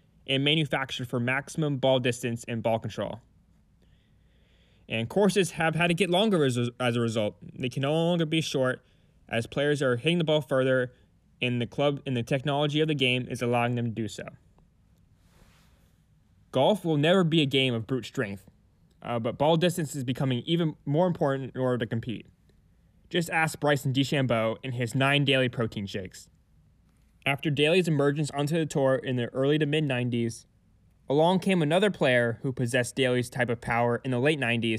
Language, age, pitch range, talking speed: English, 10-29, 115-150 Hz, 180 wpm